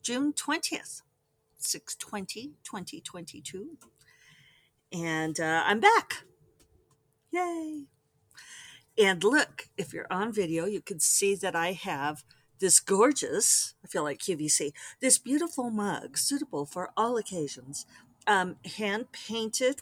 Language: English